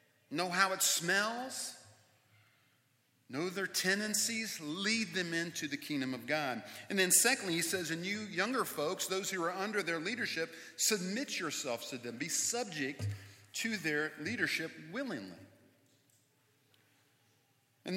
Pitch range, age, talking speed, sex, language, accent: 125-185 Hz, 40-59, 135 wpm, male, English, American